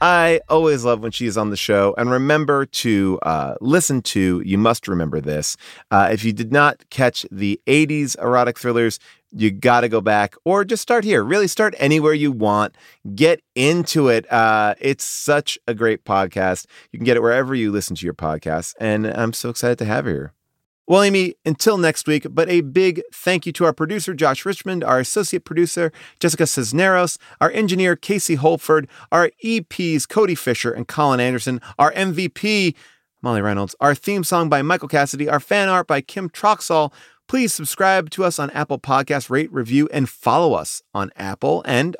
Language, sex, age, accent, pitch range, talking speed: English, male, 30-49, American, 120-180 Hz, 190 wpm